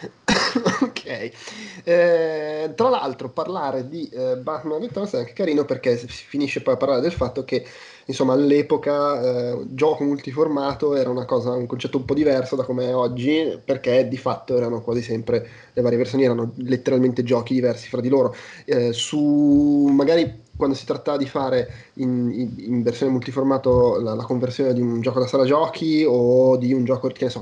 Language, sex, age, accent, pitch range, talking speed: Italian, male, 20-39, native, 125-140 Hz, 180 wpm